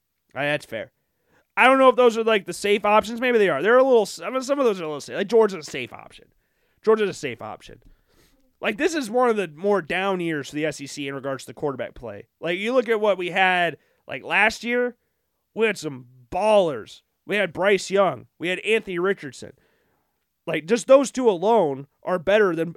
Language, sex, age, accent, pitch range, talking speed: English, male, 30-49, American, 155-210 Hz, 230 wpm